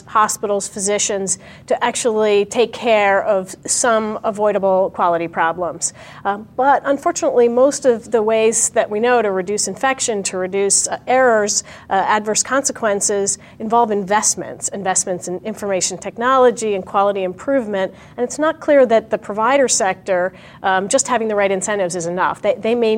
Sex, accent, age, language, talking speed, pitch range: female, American, 40-59, English, 155 wpm, 190-240 Hz